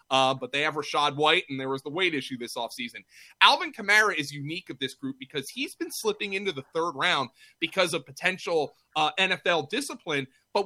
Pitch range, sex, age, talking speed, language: 135-190 Hz, male, 30-49, 205 wpm, English